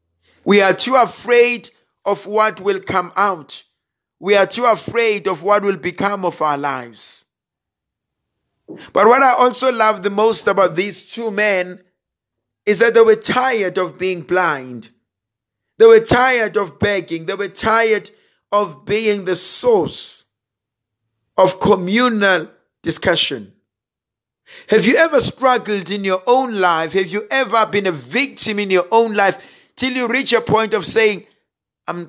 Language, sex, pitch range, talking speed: English, male, 150-215 Hz, 150 wpm